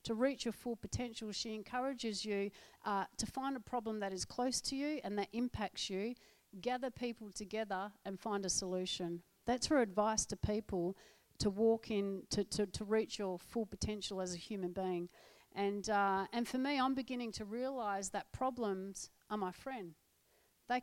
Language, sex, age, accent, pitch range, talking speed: English, female, 40-59, Australian, 200-240 Hz, 180 wpm